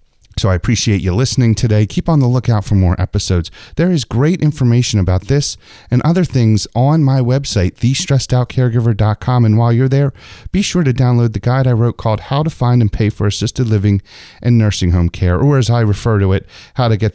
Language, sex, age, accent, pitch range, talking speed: English, male, 40-59, American, 100-130 Hz, 210 wpm